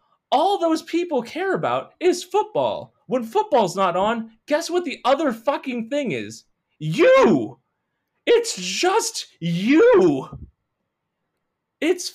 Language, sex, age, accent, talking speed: English, male, 30-49, American, 115 wpm